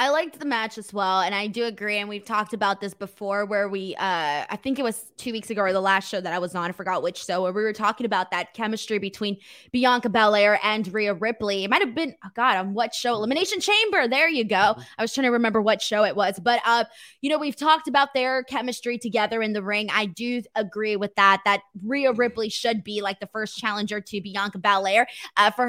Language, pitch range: English, 205-255 Hz